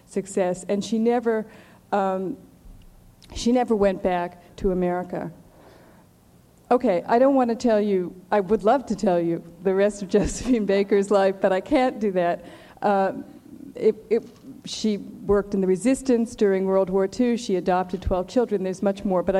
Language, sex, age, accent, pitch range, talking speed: English, female, 50-69, American, 180-220 Hz, 170 wpm